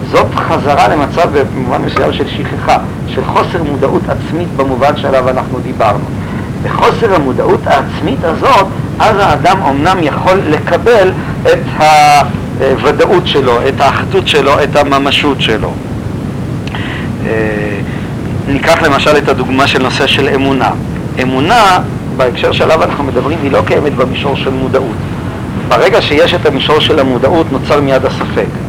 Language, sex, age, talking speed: Hebrew, male, 50-69, 130 wpm